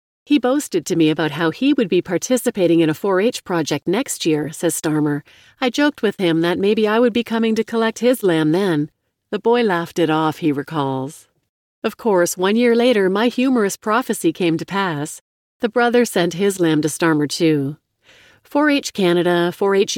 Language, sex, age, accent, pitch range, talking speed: English, female, 40-59, American, 165-220 Hz, 185 wpm